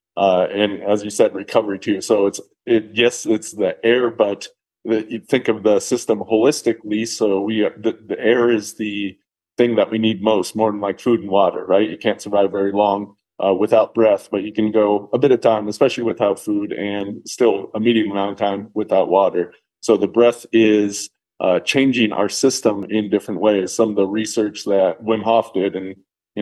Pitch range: 100-115 Hz